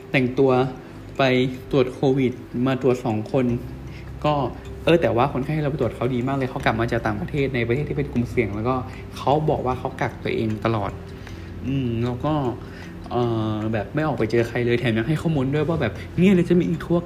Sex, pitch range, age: male, 110-135 Hz, 20-39